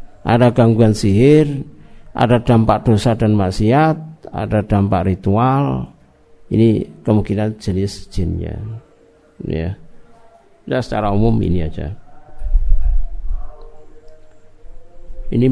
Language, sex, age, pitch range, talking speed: Indonesian, male, 50-69, 100-125 Hz, 85 wpm